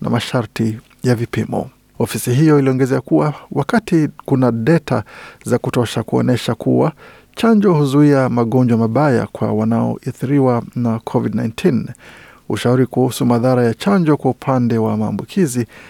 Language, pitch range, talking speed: Swahili, 115-145 Hz, 120 wpm